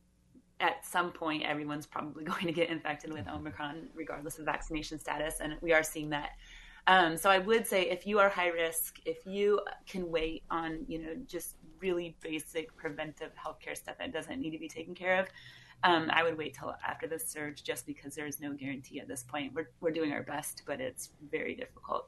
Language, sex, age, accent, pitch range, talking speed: English, female, 30-49, American, 150-165 Hz, 210 wpm